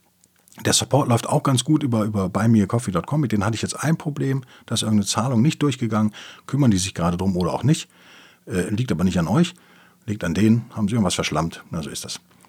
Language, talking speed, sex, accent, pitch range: German, 225 wpm, male, German, 105-155 Hz